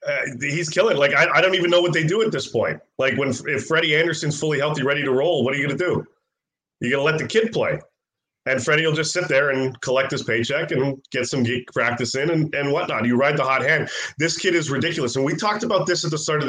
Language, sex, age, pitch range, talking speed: English, male, 30-49, 120-150 Hz, 270 wpm